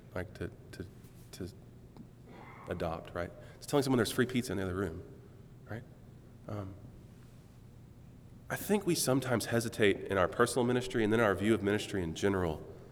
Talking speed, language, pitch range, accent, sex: 165 wpm, English, 95-125 Hz, American, male